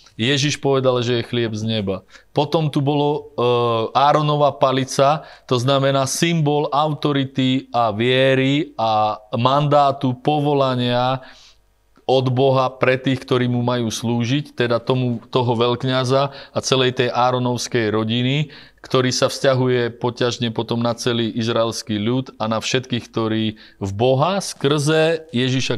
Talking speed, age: 130 wpm, 30-49